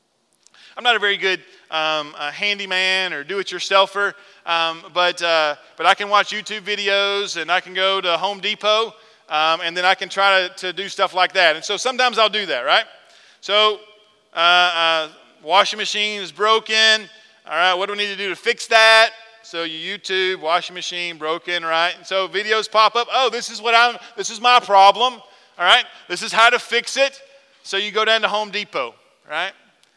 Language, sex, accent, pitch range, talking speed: English, male, American, 180-220 Hz, 200 wpm